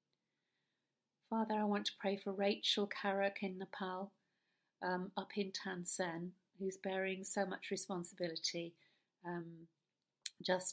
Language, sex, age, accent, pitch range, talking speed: English, female, 50-69, British, 175-195 Hz, 115 wpm